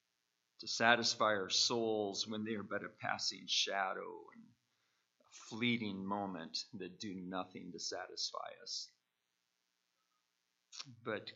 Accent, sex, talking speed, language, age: American, male, 115 wpm, English, 40-59